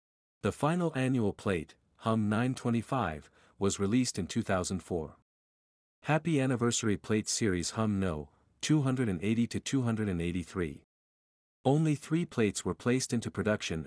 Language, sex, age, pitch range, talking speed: English, male, 50-69, 90-125 Hz, 105 wpm